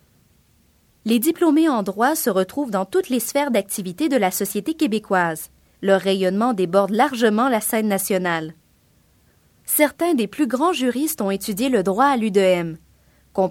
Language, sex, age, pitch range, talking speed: French, female, 30-49, 190-265 Hz, 150 wpm